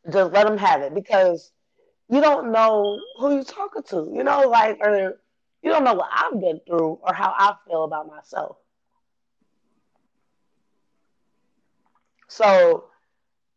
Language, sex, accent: English, female, American